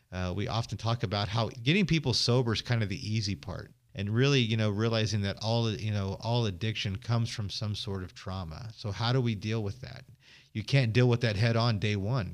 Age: 40-59